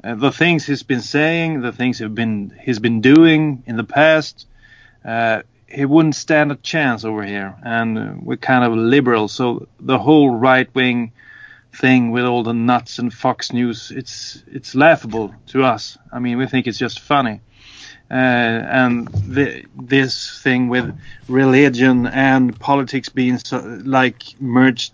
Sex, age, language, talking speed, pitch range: male, 30-49, English, 160 wpm, 115-140 Hz